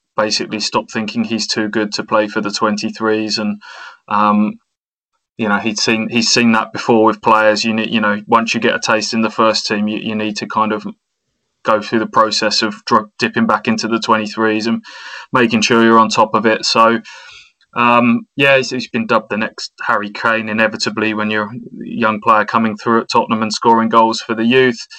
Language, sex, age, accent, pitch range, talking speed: English, male, 20-39, British, 110-120 Hz, 210 wpm